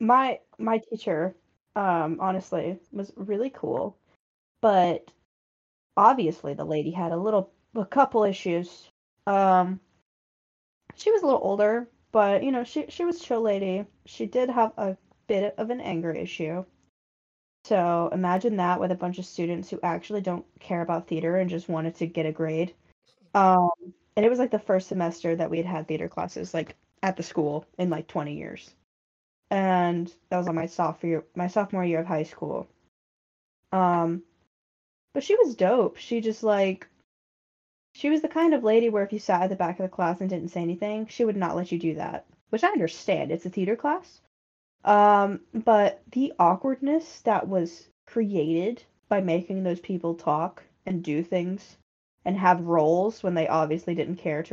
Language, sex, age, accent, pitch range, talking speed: English, female, 10-29, American, 170-215 Hz, 175 wpm